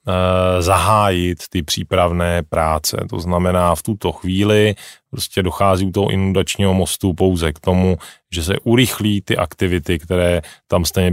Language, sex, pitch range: Czech, male, 90-100 Hz